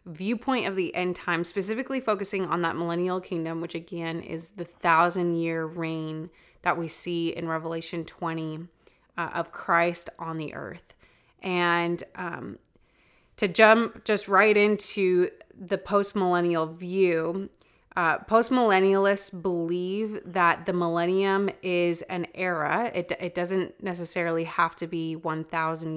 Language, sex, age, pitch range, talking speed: English, female, 20-39, 170-200 Hz, 130 wpm